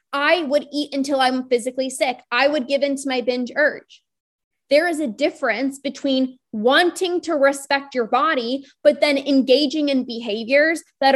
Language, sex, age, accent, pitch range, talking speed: English, female, 20-39, American, 255-295 Hz, 160 wpm